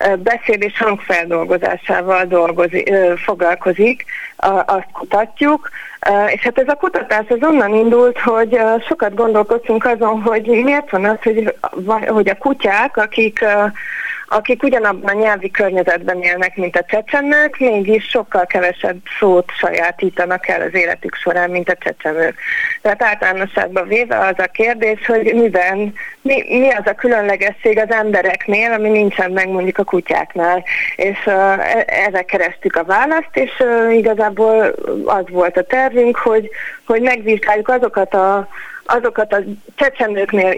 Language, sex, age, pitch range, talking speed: Hungarian, female, 30-49, 185-230 Hz, 130 wpm